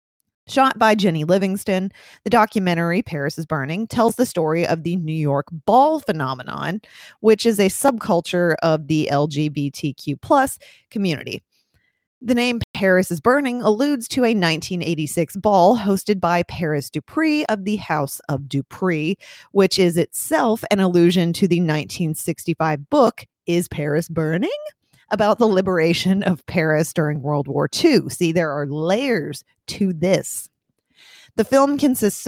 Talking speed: 140 wpm